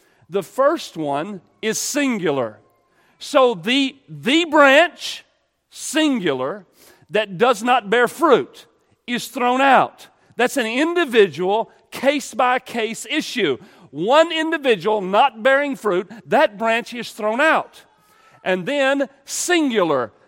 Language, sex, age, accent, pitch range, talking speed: English, male, 40-59, American, 200-300 Hz, 110 wpm